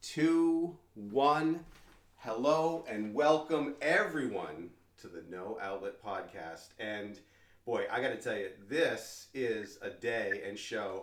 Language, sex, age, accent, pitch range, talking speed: English, male, 40-59, American, 100-145 Hz, 125 wpm